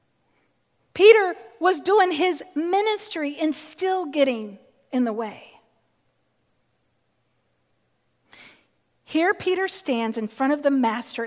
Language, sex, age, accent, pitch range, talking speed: English, female, 40-59, American, 240-360 Hz, 100 wpm